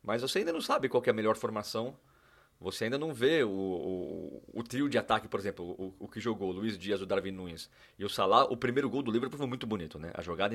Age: 30-49